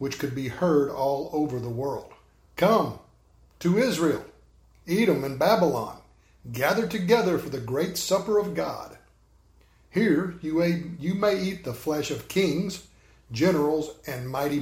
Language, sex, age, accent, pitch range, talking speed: English, male, 50-69, American, 130-165 Hz, 135 wpm